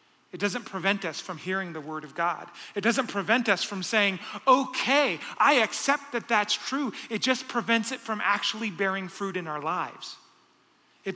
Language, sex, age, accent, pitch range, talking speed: English, male, 30-49, American, 195-235 Hz, 185 wpm